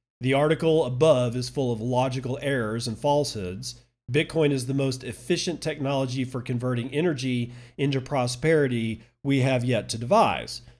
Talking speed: 145 wpm